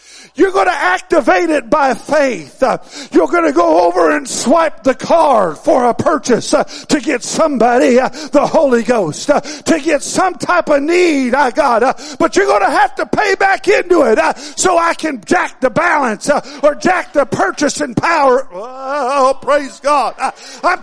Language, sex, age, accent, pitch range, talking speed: English, male, 50-69, American, 290-385 Hz, 165 wpm